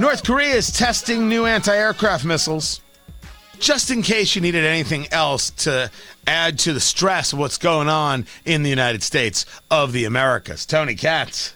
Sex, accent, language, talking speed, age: male, American, English, 165 wpm, 40-59